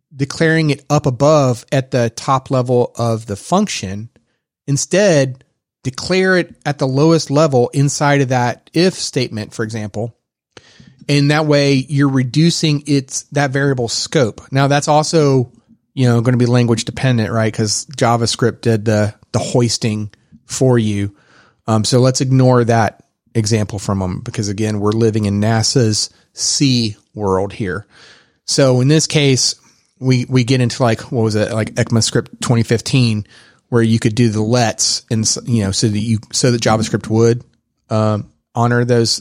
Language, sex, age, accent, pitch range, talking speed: English, male, 30-49, American, 115-140 Hz, 160 wpm